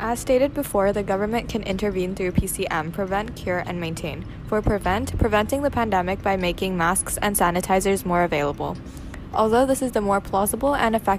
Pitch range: 180-205 Hz